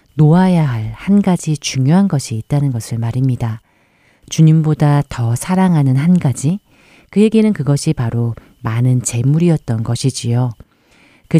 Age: 40-59